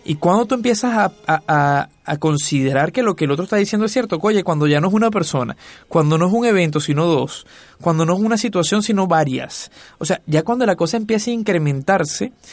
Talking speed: 220 wpm